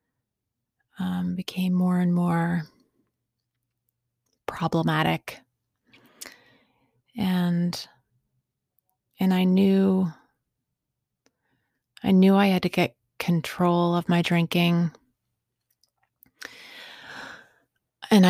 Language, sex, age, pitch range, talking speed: English, female, 30-49, 120-185 Hz, 70 wpm